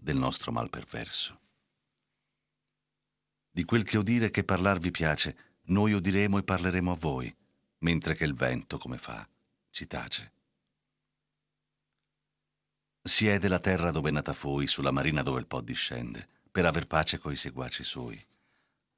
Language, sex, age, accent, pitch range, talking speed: Italian, male, 50-69, native, 75-95 Hz, 140 wpm